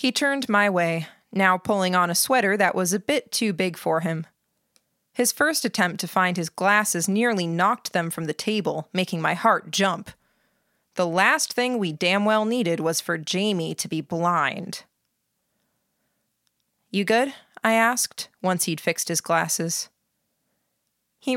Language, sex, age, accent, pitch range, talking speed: English, female, 20-39, American, 170-220 Hz, 160 wpm